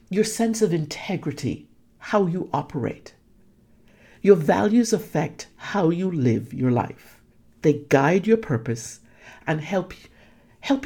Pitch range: 135-215 Hz